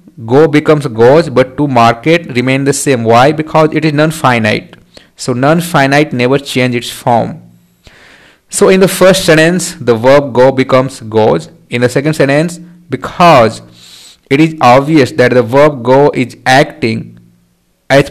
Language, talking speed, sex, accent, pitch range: English, 150 wpm, male, Indian, 120-160 Hz